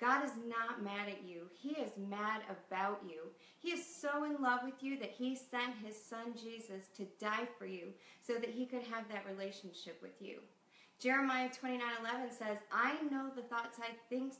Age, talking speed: 30-49, 195 wpm